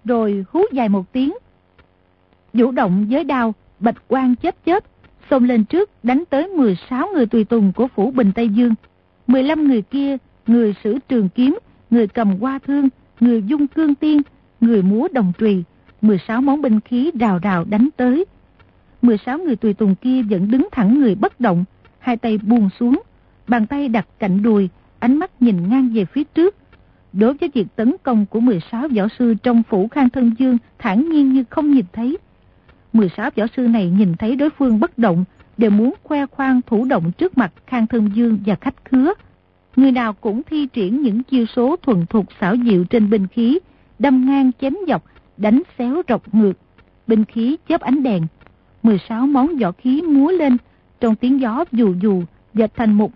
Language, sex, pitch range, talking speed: Vietnamese, female, 215-270 Hz, 195 wpm